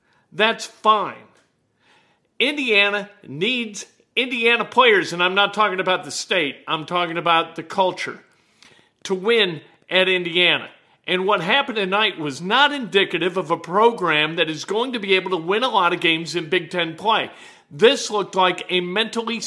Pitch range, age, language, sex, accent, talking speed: 175-225 Hz, 50-69, English, male, American, 165 wpm